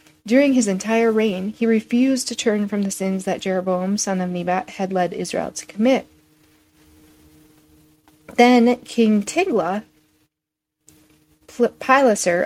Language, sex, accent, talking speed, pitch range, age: English, female, American, 120 wpm, 185-245 Hz, 40-59